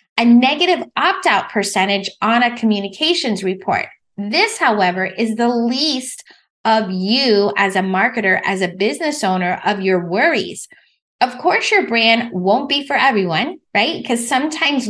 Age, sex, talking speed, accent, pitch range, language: 20-39, female, 150 wpm, American, 200-260 Hz, English